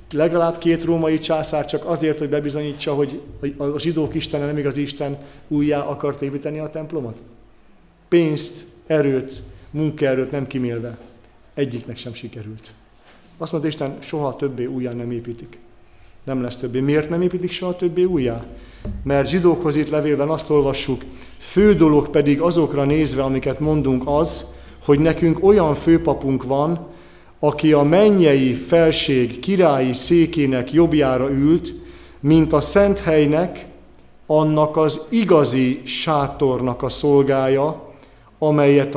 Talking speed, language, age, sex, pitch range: 130 wpm, Hungarian, 50-69, male, 135-165 Hz